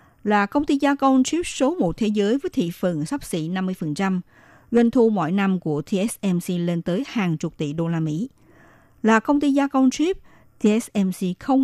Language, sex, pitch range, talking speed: Vietnamese, female, 180-245 Hz, 195 wpm